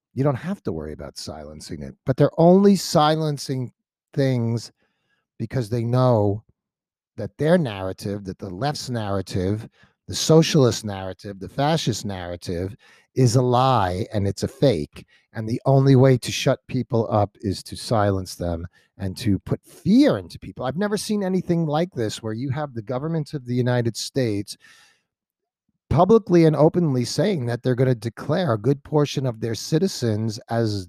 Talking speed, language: 165 wpm, English